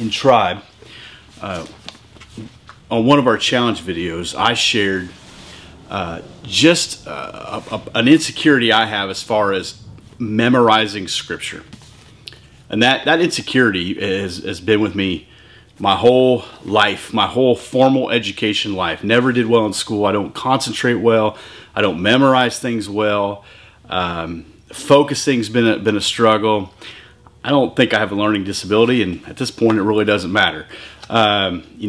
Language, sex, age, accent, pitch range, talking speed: English, male, 30-49, American, 105-130 Hz, 150 wpm